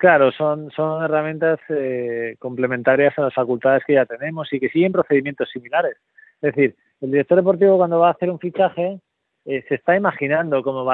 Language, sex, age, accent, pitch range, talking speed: Spanish, male, 30-49, Spanish, 130-155 Hz, 185 wpm